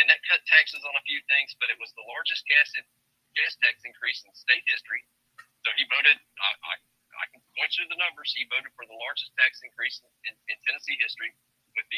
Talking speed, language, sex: 230 wpm, English, male